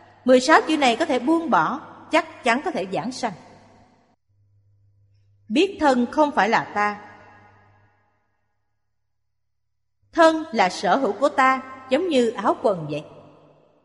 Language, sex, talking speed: Vietnamese, female, 135 wpm